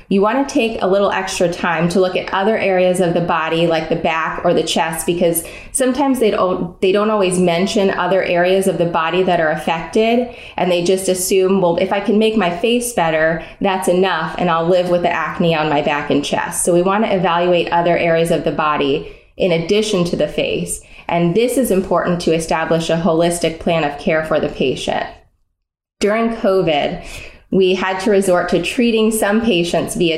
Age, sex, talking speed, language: 20-39, female, 200 wpm, English